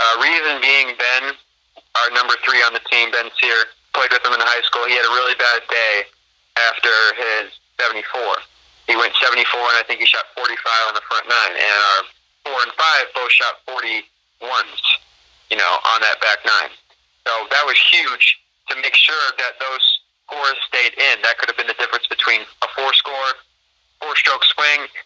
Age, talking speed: 30-49, 200 wpm